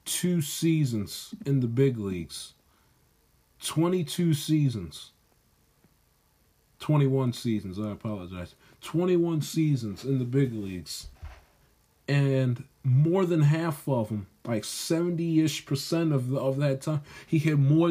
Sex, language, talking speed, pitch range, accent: male, English, 115 wpm, 115-155 Hz, American